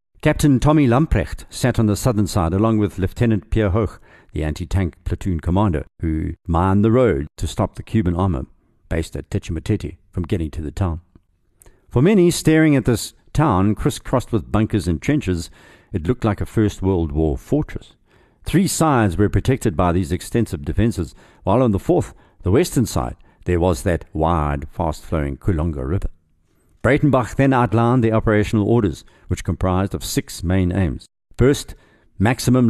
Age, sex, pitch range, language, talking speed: 60-79, male, 90-115 Hz, English, 165 wpm